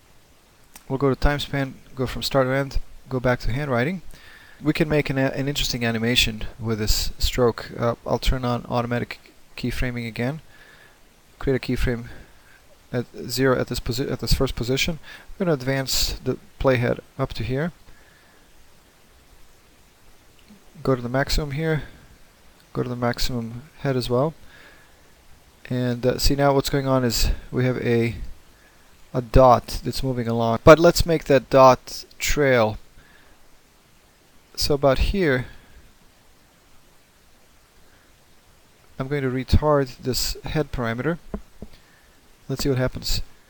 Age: 20-39